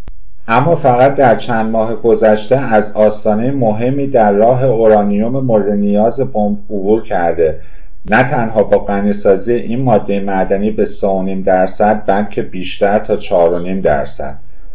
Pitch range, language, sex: 100-125 Hz, Persian, male